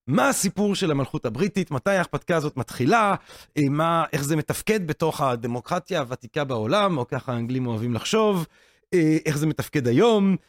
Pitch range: 150-205 Hz